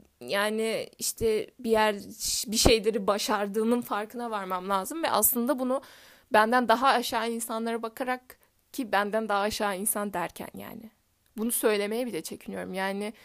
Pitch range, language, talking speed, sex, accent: 210-255 Hz, Turkish, 135 wpm, female, native